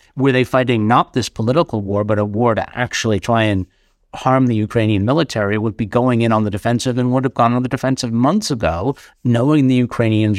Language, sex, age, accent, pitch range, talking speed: English, male, 60-79, American, 105-130 Hz, 215 wpm